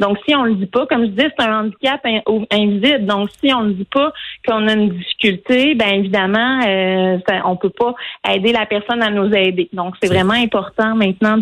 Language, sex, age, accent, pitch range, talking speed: French, female, 30-49, Canadian, 195-230 Hz, 210 wpm